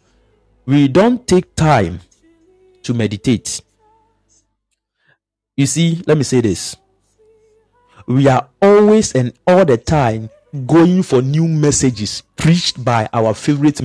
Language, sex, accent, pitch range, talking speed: English, male, Nigerian, 125-185 Hz, 115 wpm